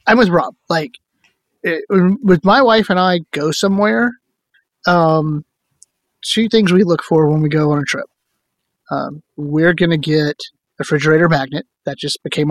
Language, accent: English, American